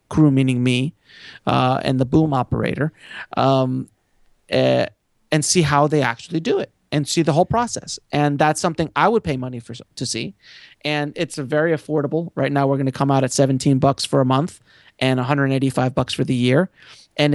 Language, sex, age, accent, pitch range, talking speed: English, male, 30-49, American, 130-145 Hz, 210 wpm